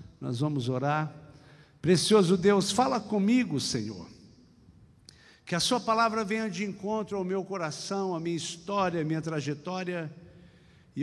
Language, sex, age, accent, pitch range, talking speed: Portuguese, male, 50-69, Brazilian, 140-215 Hz, 135 wpm